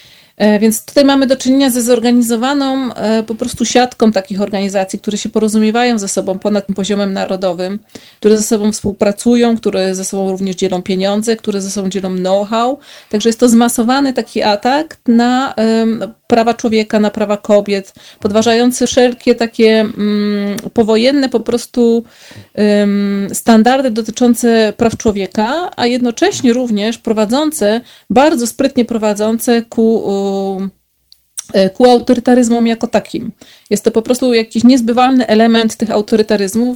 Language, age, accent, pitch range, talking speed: Polish, 30-49, native, 205-240 Hz, 130 wpm